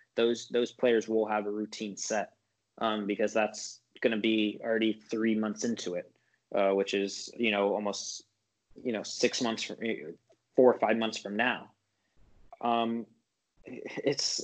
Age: 20-39